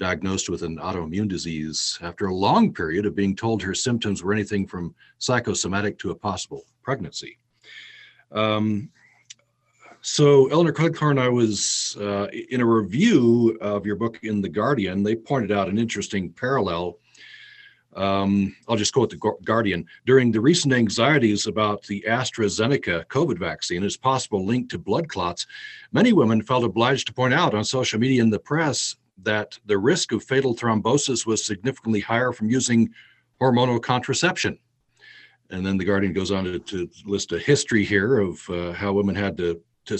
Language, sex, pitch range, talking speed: English, male, 100-130 Hz, 165 wpm